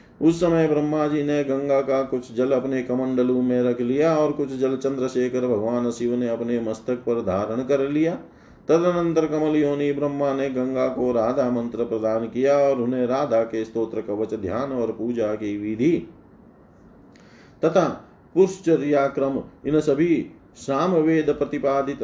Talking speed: 150 wpm